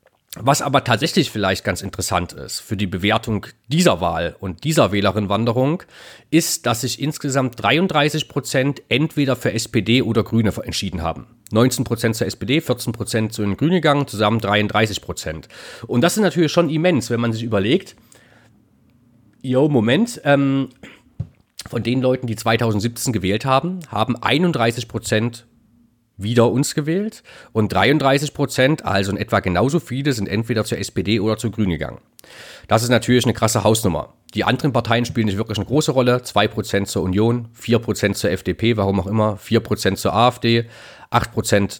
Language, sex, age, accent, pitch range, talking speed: German, male, 40-59, German, 105-135 Hz, 160 wpm